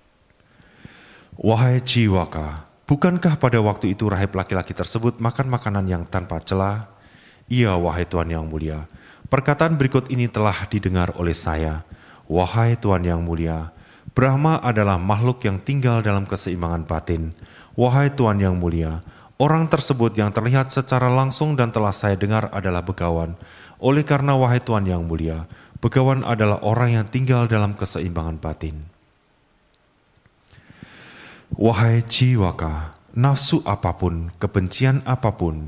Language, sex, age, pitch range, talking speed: Indonesian, male, 30-49, 90-120 Hz, 125 wpm